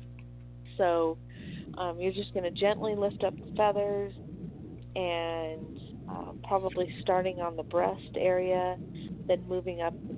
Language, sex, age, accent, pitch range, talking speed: English, female, 40-59, American, 160-200 Hz, 135 wpm